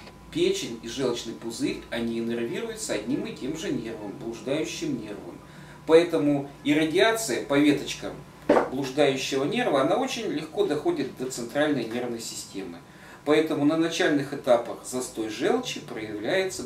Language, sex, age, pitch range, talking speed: Russian, male, 40-59, 115-160 Hz, 125 wpm